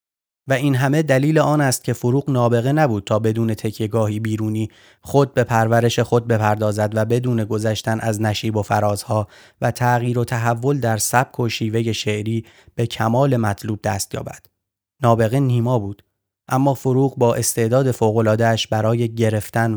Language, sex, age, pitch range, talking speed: Persian, male, 30-49, 110-120 Hz, 150 wpm